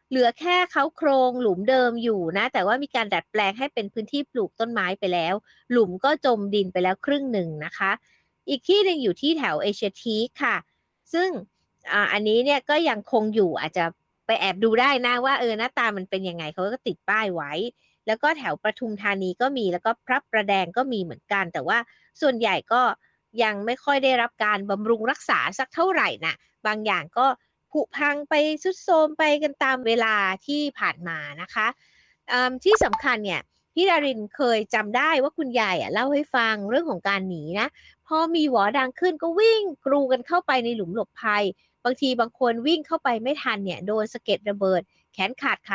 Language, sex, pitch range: Thai, female, 205-280 Hz